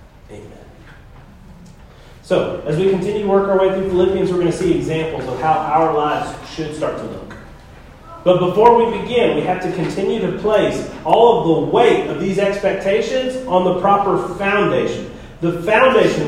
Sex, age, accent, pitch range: male, 30-49, American, 170-250 Hz